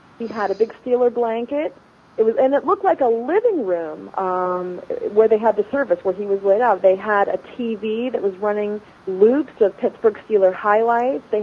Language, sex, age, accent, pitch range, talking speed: English, female, 30-49, American, 180-235 Hz, 205 wpm